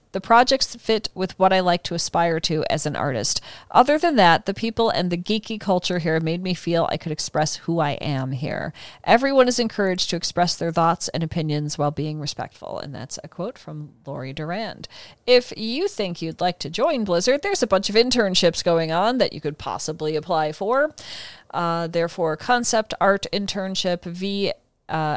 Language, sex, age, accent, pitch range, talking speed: English, female, 40-59, American, 165-210 Hz, 190 wpm